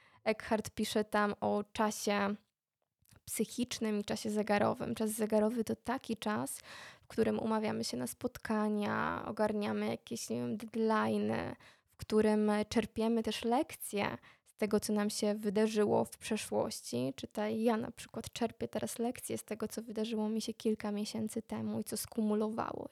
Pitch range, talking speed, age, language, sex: 210-225 Hz, 145 wpm, 20-39, Polish, female